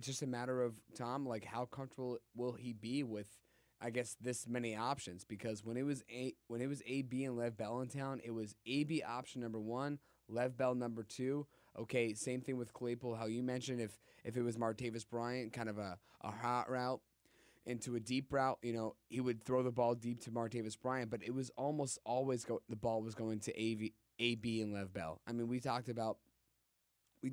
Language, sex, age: English, male, 20-39